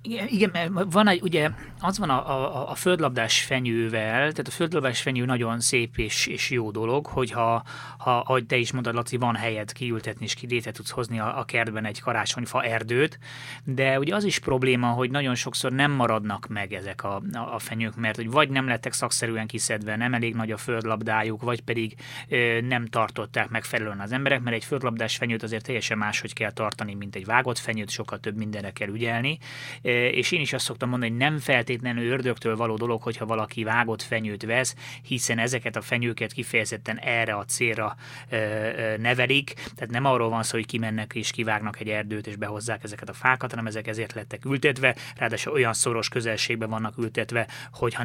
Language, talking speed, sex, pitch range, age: Hungarian, 185 wpm, male, 110-130 Hz, 20-39